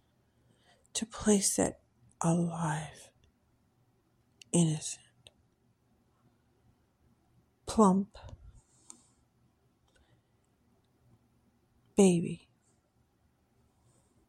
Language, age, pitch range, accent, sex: English, 60-79, 120-195 Hz, American, female